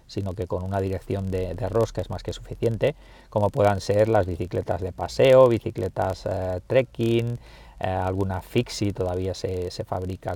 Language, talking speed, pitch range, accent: Spanish, 170 wpm, 95-115 Hz, Spanish